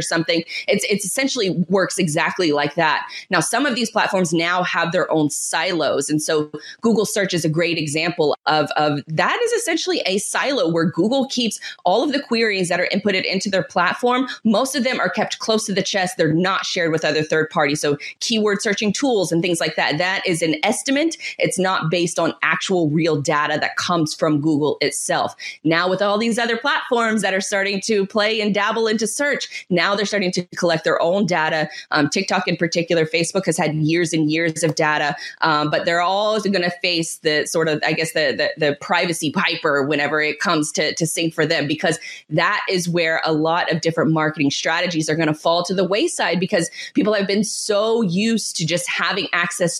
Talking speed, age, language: 210 wpm, 20-39, English